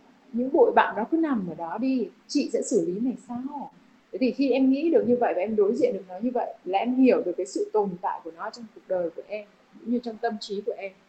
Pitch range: 210-270 Hz